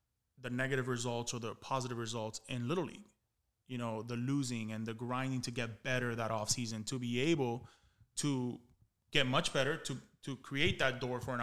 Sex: male